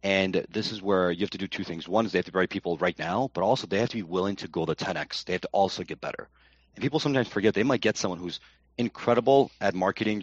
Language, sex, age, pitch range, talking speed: English, male, 30-49, 80-110 Hz, 280 wpm